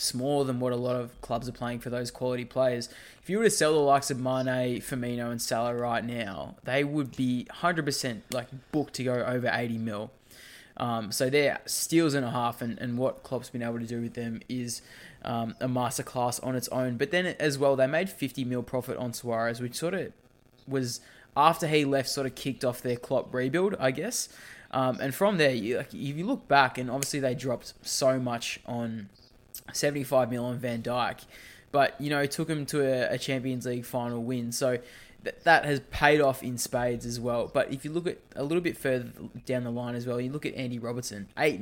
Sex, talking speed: male, 220 wpm